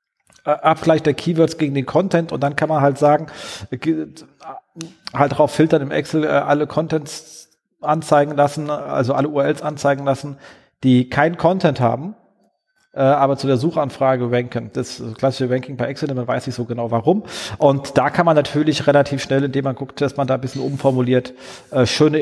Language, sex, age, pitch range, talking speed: German, male, 40-59, 130-160 Hz, 175 wpm